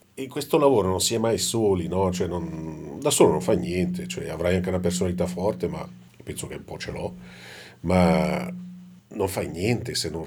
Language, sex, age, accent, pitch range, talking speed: Italian, male, 40-59, native, 80-95 Hz, 205 wpm